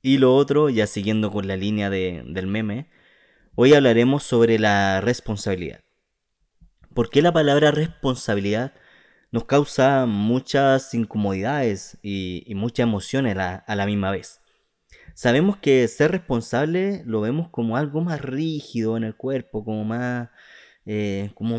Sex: male